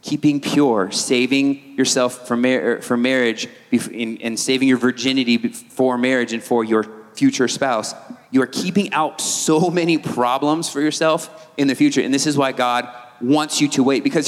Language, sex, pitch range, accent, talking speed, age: English, male, 130-170 Hz, American, 185 wpm, 30-49